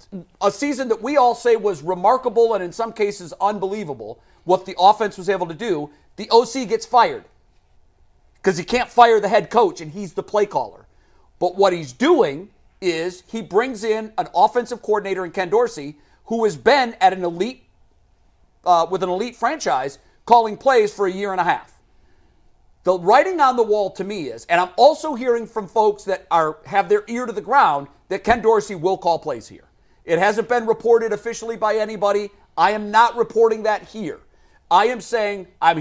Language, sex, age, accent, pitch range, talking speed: English, male, 40-59, American, 185-235 Hz, 195 wpm